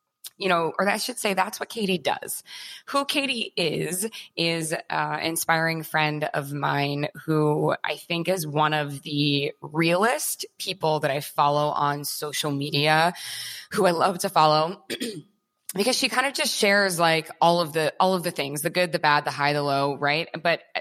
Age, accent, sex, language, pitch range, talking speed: 20-39, American, female, English, 145-175 Hz, 180 wpm